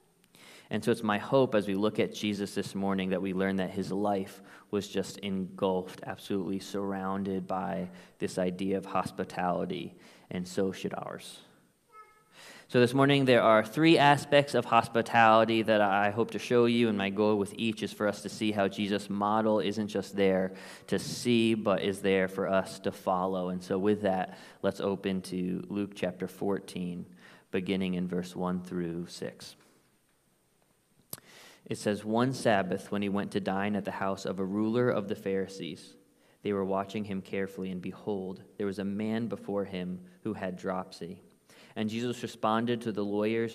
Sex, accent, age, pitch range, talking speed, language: male, American, 20-39, 95-110 Hz, 175 wpm, English